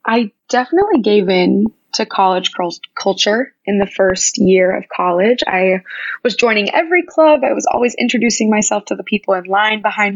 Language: English